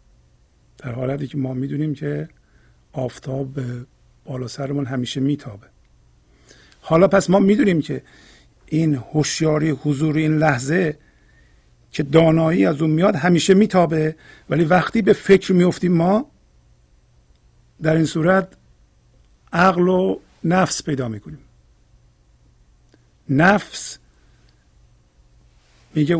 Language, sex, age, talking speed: Persian, male, 50-69, 100 wpm